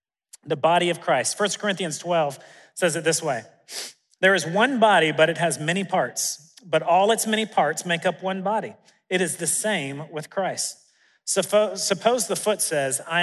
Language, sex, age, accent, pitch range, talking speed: English, male, 40-59, American, 155-205 Hz, 185 wpm